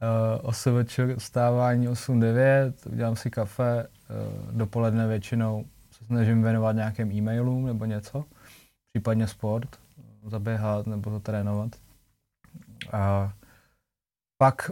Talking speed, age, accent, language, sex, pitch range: 100 wpm, 20-39, native, Czech, male, 110-125 Hz